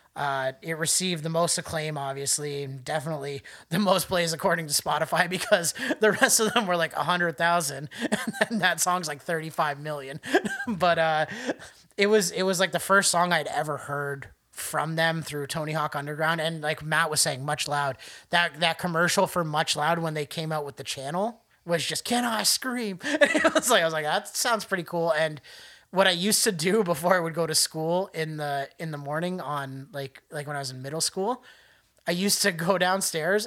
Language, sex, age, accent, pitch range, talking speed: English, male, 30-49, American, 150-190 Hz, 205 wpm